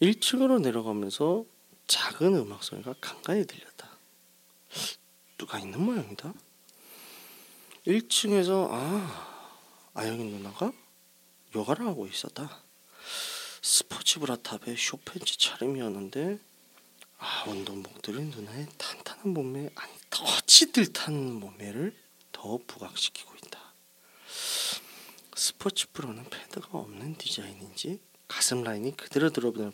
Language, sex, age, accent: Korean, male, 40-59, native